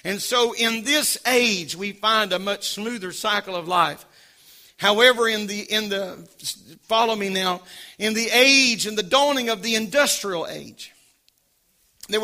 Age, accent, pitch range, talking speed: 40-59, American, 195-240 Hz, 155 wpm